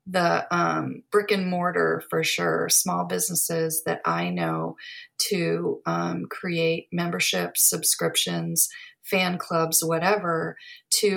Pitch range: 170-210 Hz